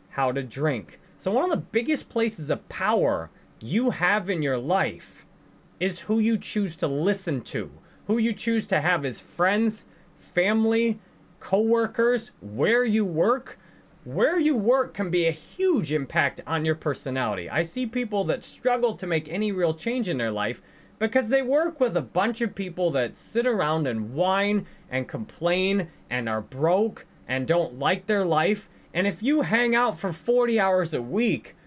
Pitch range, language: 160-225 Hz, English